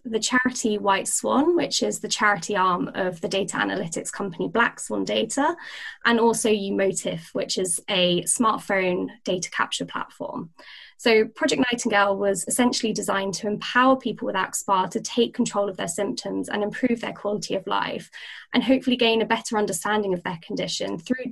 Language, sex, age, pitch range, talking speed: English, female, 20-39, 200-255 Hz, 170 wpm